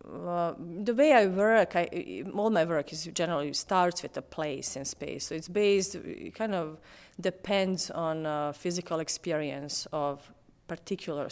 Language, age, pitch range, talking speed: English, 30-49, 150-185 Hz, 160 wpm